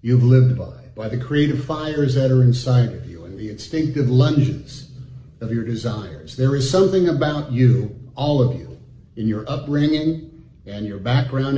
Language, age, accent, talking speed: English, 50-69, American, 170 wpm